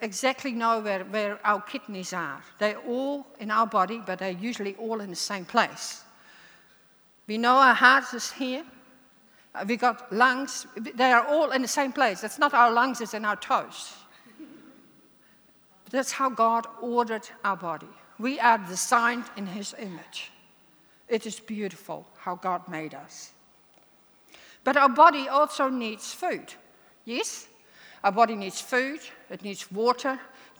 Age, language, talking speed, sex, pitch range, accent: 60-79, English, 155 wpm, female, 210-260 Hz, Dutch